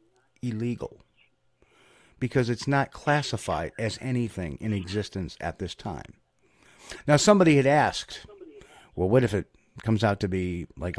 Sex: male